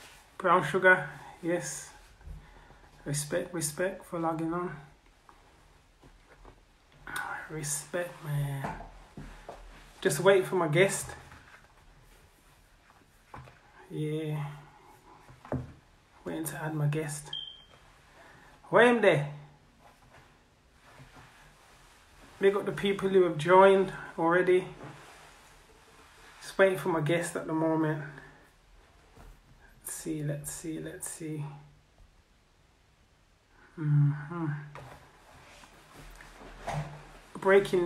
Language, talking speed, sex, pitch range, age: English, 75 wpm, male, 145-185 Hz, 30-49